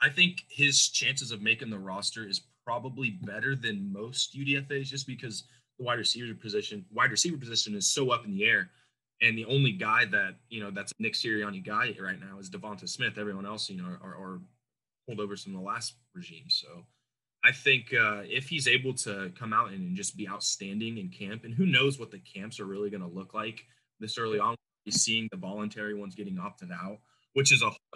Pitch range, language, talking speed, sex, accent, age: 105-175 Hz, English, 215 wpm, male, American, 20-39